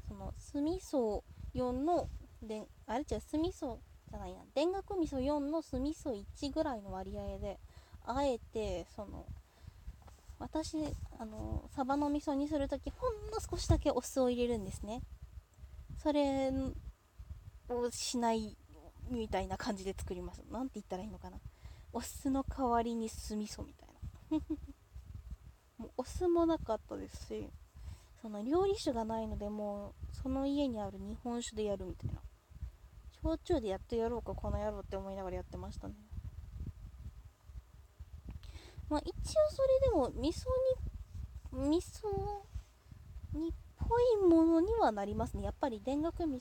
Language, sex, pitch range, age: Japanese, female, 200-300 Hz, 20-39